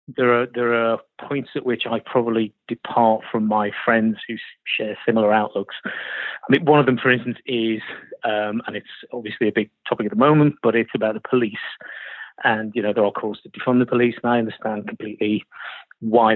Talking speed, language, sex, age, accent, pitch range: 200 wpm, English, male, 30-49, British, 110-125 Hz